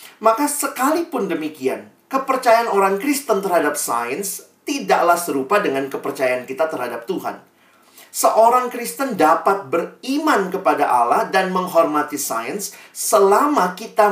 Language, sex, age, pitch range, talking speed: Indonesian, male, 40-59, 150-225 Hz, 110 wpm